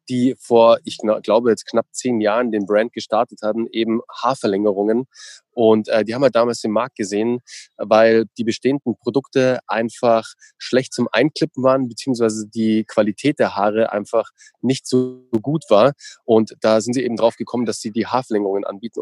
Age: 20-39